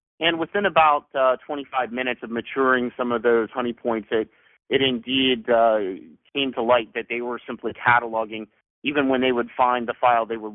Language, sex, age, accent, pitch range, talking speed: English, male, 40-59, American, 110-130 Hz, 195 wpm